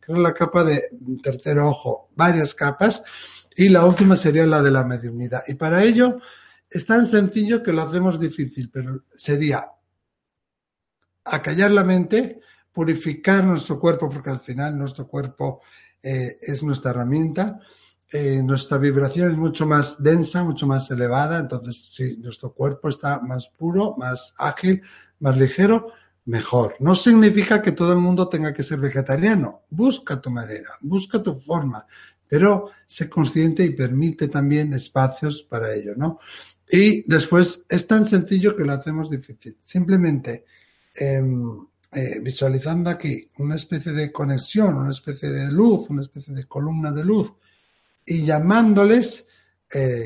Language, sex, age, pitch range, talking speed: Spanish, male, 60-79, 135-180 Hz, 145 wpm